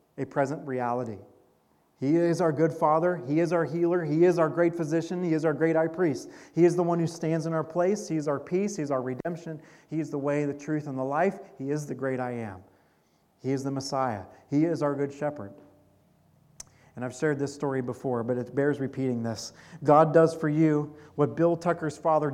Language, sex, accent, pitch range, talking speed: English, male, American, 135-165 Hz, 225 wpm